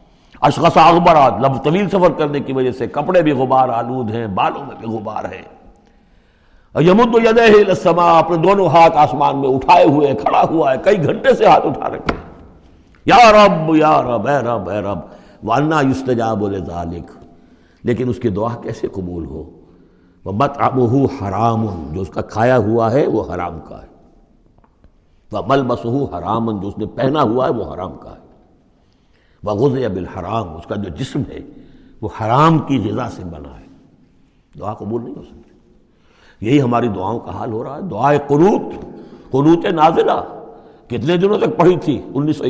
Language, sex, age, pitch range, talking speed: Urdu, male, 60-79, 100-155 Hz, 165 wpm